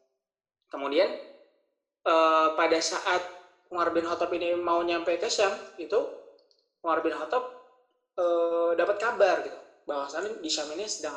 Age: 20-39